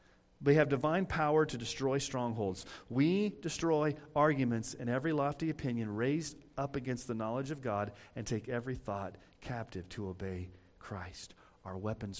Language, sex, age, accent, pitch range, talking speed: English, male, 40-59, American, 100-145 Hz, 150 wpm